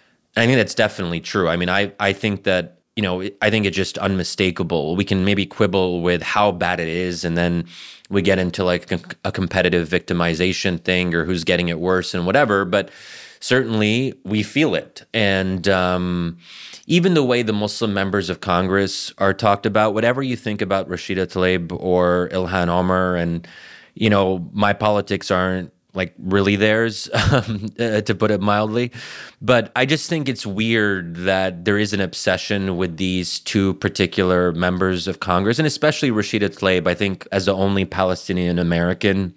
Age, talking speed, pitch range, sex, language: 30-49, 175 wpm, 90-115 Hz, male, English